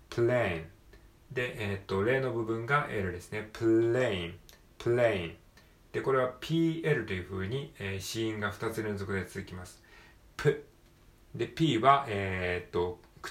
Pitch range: 95-125 Hz